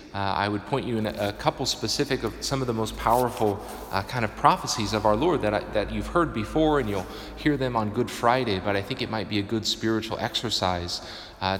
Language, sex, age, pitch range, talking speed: English, male, 30-49, 95-115 Hz, 245 wpm